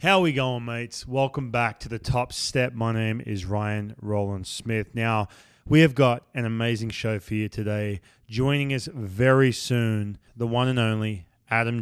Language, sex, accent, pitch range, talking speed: English, male, Australian, 110-130 Hz, 185 wpm